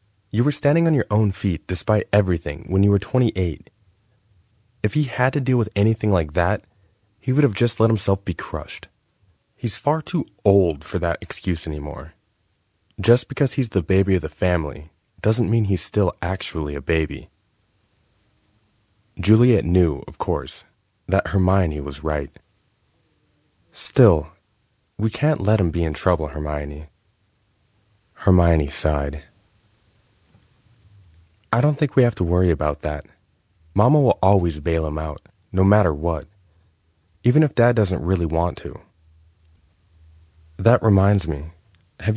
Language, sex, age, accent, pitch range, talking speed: English, male, 20-39, American, 85-110 Hz, 145 wpm